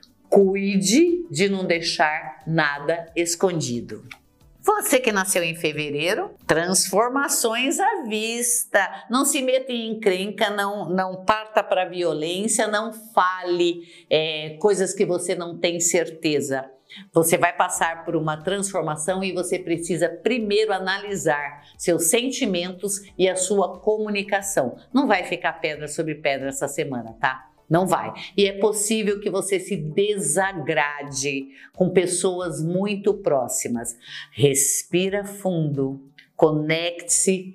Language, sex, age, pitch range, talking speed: Portuguese, female, 50-69, 160-205 Hz, 120 wpm